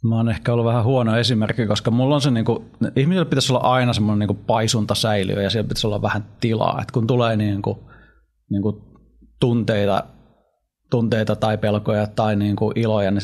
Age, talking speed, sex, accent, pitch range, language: 30-49, 185 wpm, male, native, 105-130 Hz, Finnish